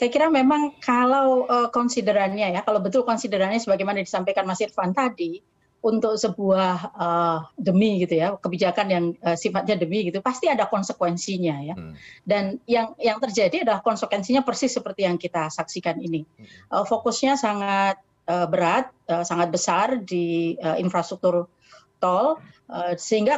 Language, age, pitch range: Indonesian, 30-49, 175-220 Hz